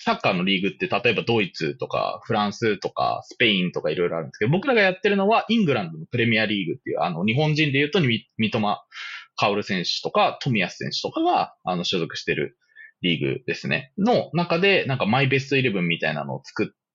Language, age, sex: Japanese, 20-39, male